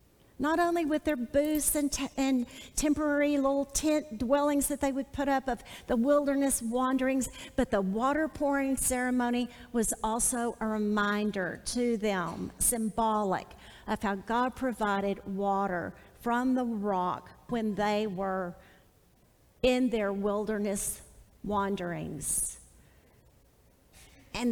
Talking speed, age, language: 115 wpm, 50-69, English